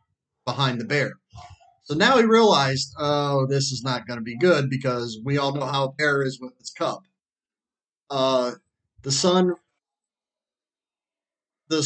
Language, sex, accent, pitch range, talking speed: English, male, American, 135-165 Hz, 150 wpm